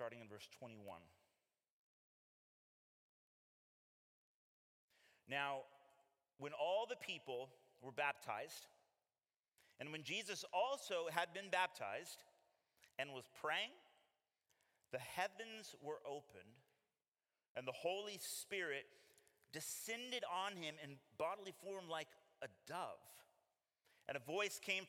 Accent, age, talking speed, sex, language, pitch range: American, 30-49, 100 wpm, male, English, 140-210 Hz